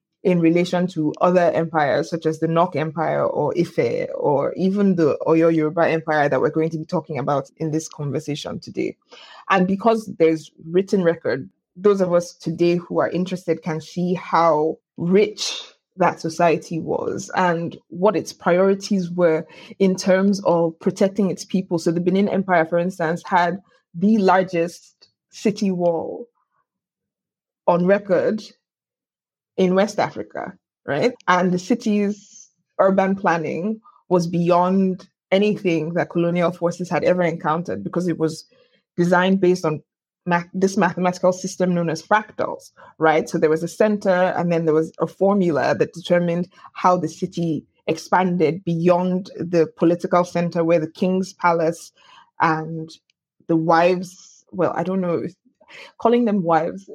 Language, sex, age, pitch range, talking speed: English, female, 20-39, 165-195 Hz, 145 wpm